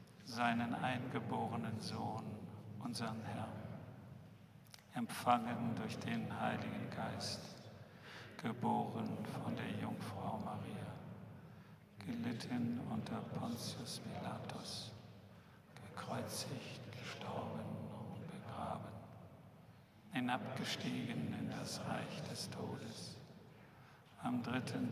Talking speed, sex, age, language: 75 wpm, male, 50-69, German